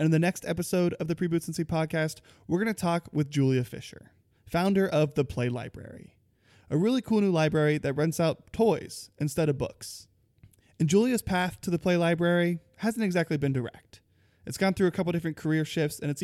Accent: American